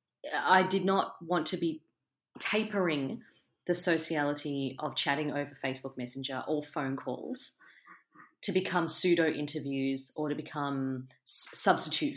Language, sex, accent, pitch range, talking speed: English, female, Australian, 140-180 Hz, 120 wpm